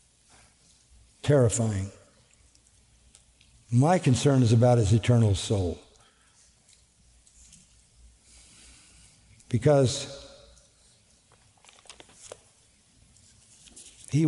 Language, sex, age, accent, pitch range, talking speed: English, male, 50-69, American, 115-150 Hz, 40 wpm